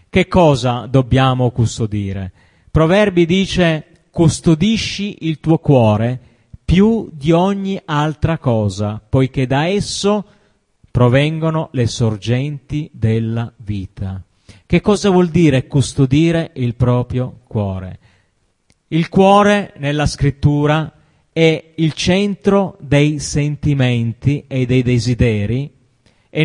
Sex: male